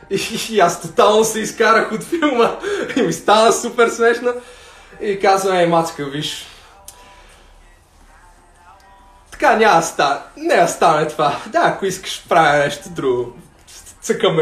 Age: 20-39